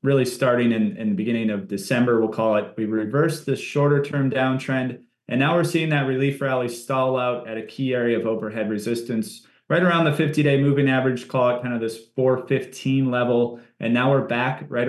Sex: male